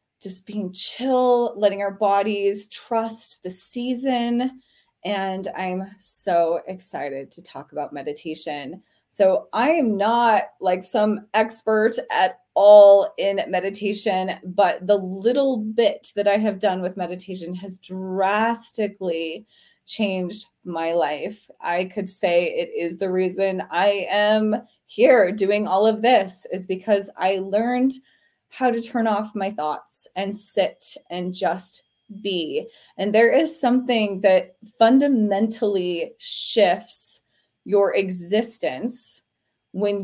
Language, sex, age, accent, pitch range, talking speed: English, female, 20-39, American, 190-245 Hz, 125 wpm